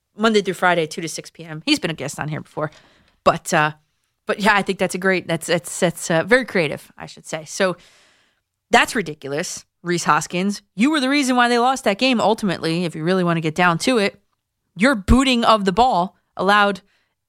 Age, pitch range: 30-49, 155-220 Hz